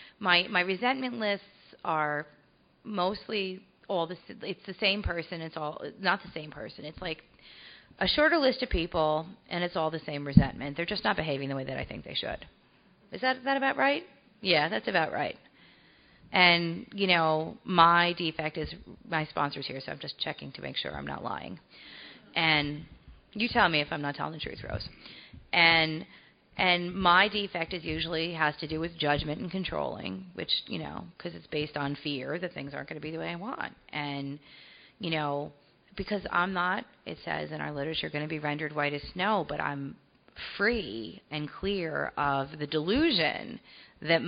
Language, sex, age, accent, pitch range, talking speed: English, female, 30-49, American, 150-185 Hz, 190 wpm